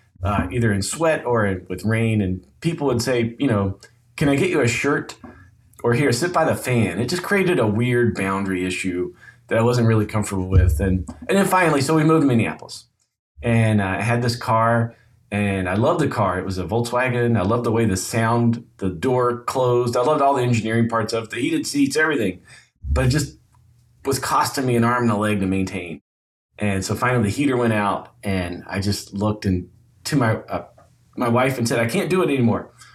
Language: English